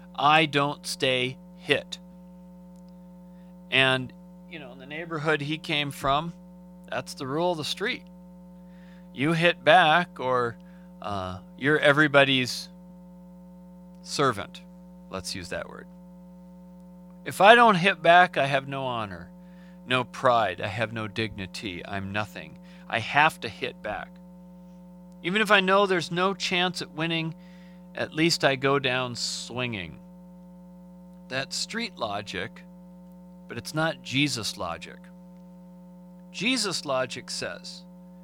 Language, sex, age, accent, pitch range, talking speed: English, male, 40-59, American, 135-180 Hz, 125 wpm